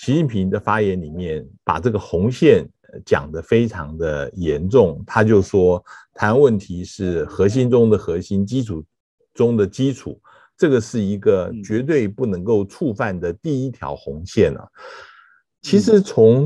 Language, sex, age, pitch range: Chinese, male, 50-69, 95-130 Hz